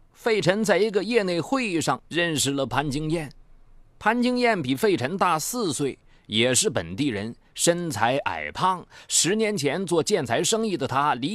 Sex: male